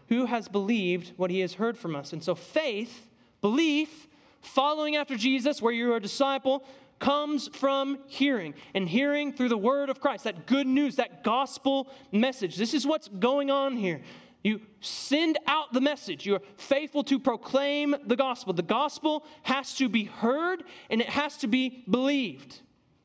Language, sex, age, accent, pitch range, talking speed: English, male, 20-39, American, 215-285 Hz, 175 wpm